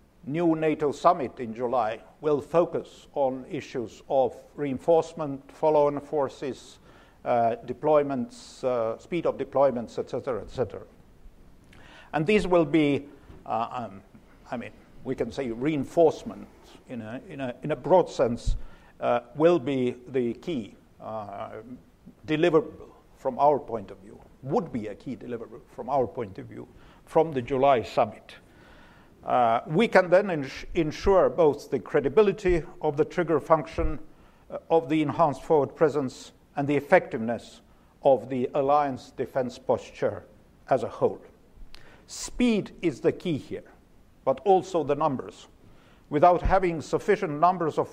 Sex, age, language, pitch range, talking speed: male, 50-69, English, 135-165 Hz, 140 wpm